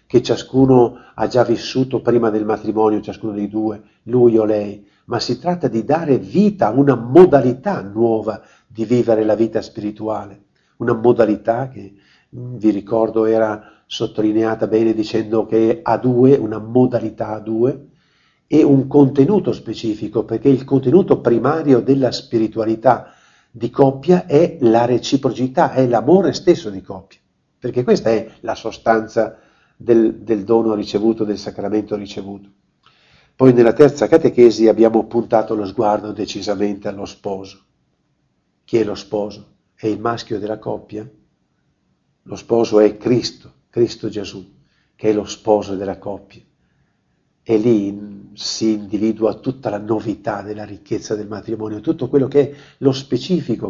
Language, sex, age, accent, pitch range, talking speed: Italian, male, 50-69, native, 105-125 Hz, 140 wpm